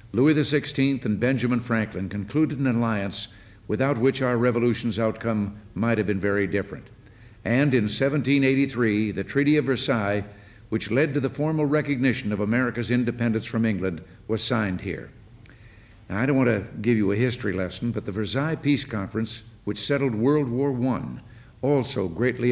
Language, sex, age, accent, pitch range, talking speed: English, male, 60-79, American, 105-130 Hz, 160 wpm